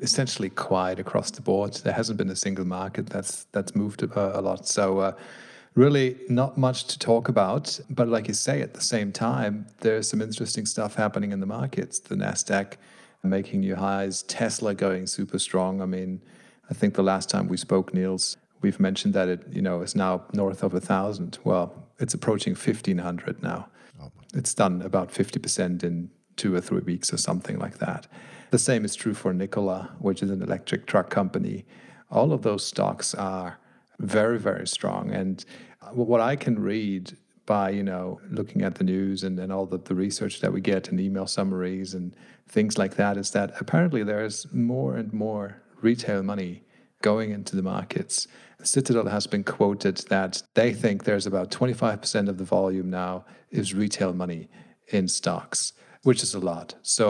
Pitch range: 95-115 Hz